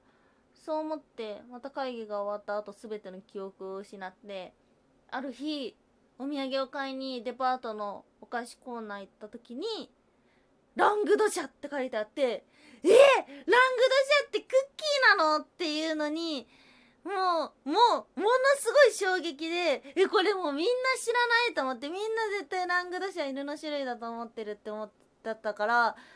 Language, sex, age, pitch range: Japanese, female, 20-39, 240-335 Hz